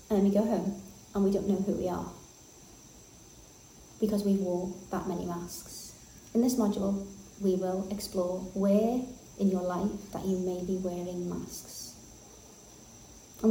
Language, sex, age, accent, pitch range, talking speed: English, female, 30-49, British, 180-205 Hz, 155 wpm